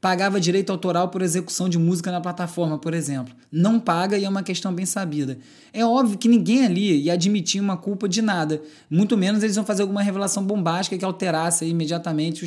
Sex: male